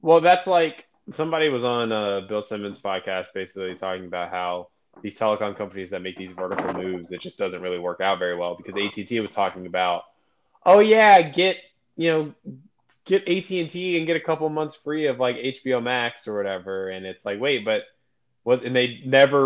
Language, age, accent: English, 20-39, American